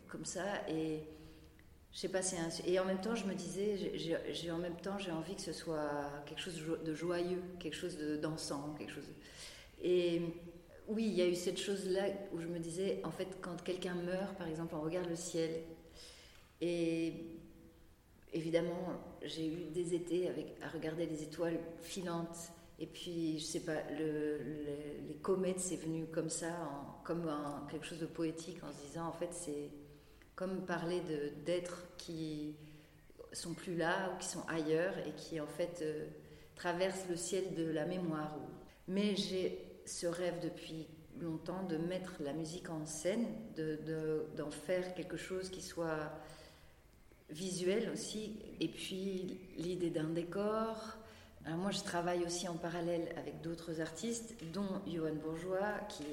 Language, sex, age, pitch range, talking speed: French, female, 40-59, 155-180 Hz, 170 wpm